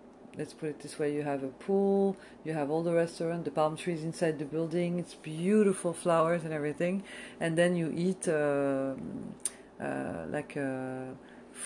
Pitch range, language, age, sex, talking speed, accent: 150-180 Hz, English, 40-59, female, 170 wpm, French